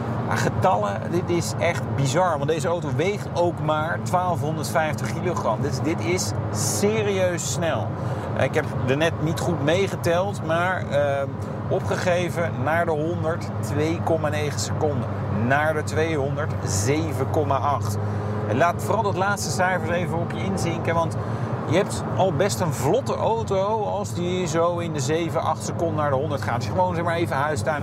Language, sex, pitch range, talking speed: Dutch, male, 110-155 Hz, 150 wpm